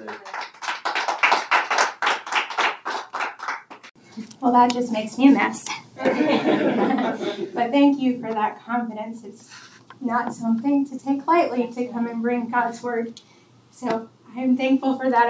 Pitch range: 230-275 Hz